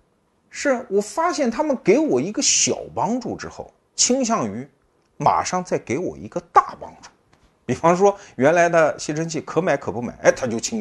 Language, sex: Chinese, male